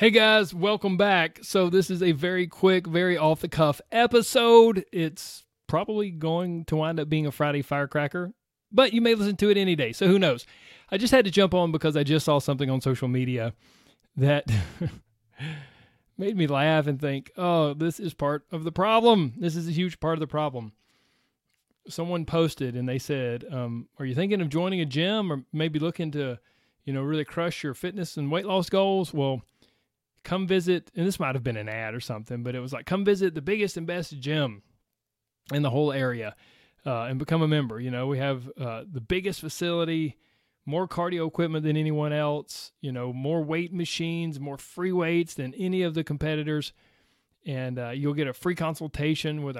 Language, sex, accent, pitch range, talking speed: English, male, American, 135-180 Hz, 200 wpm